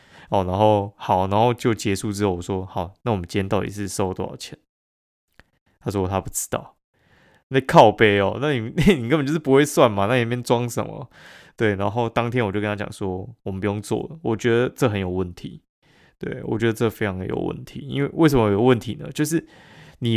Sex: male